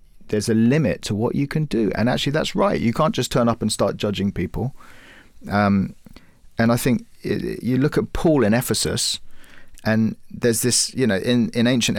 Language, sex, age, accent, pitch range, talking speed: English, male, 40-59, British, 100-125 Hz, 195 wpm